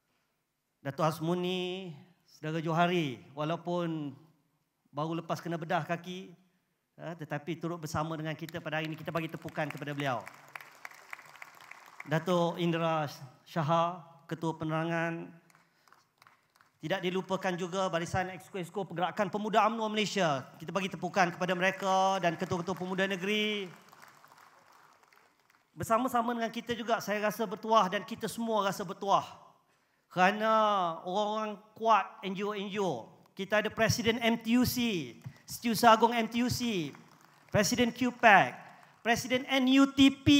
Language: Malay